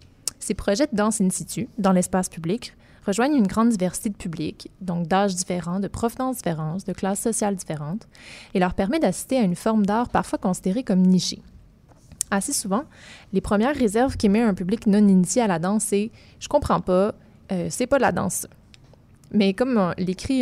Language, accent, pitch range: French, Canadian, 180-225 Hz